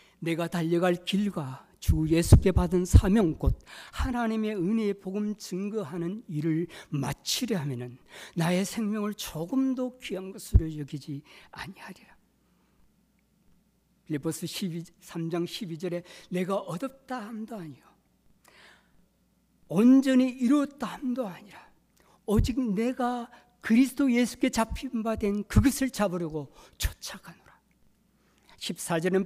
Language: Korean